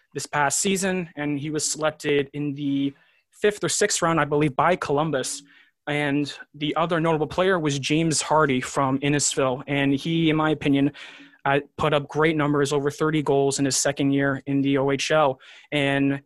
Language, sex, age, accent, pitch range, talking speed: English, male, 20-39, American, 140-155 Hz, 175 wpm